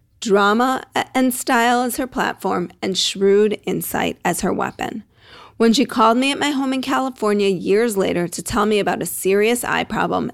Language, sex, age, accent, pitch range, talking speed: English, female, 40-59, American, 185-235 Hz, 180 wpm